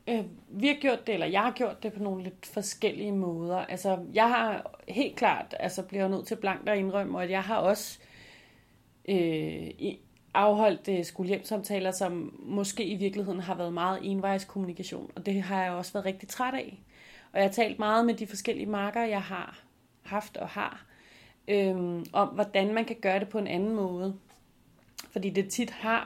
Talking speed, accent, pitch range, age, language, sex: 185 wpm, native, 180-215 Hz, 30-49, Danish, female